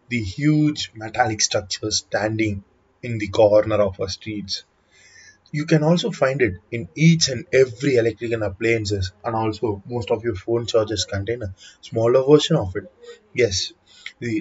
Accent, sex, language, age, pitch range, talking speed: native, male, Tamil, 20-39, 105-150 Hz, 155 wpm